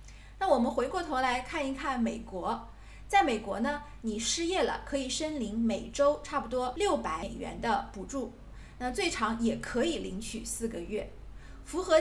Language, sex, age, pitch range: Chinese, female, 20-39, 220-285 Hz